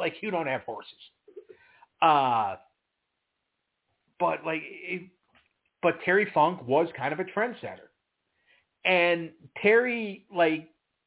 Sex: male